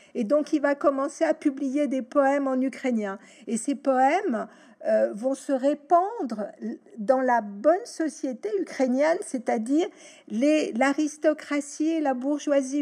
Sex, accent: female, French